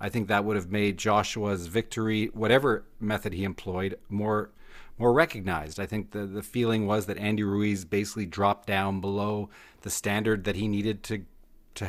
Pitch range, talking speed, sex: 100-120 Hz, 175 wpm, male